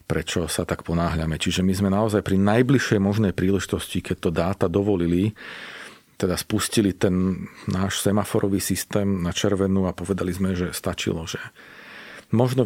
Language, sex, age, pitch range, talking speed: Slovak, male, 40-59, 95-110 Hz, 145 wpm